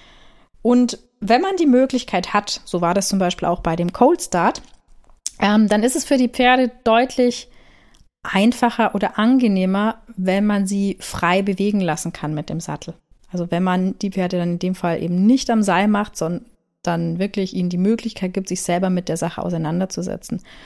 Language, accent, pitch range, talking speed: German, German, 180-220 Hz, 185 wpm